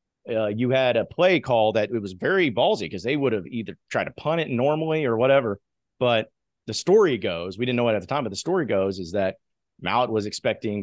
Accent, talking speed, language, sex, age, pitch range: American, 240 wpm, English, male, 30-49, 105-125 Hz